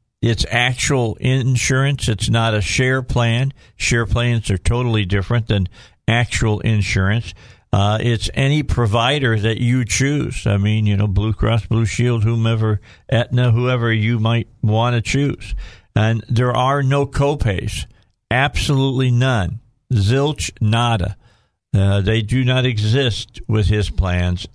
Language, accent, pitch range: English, American, 105-125 Hz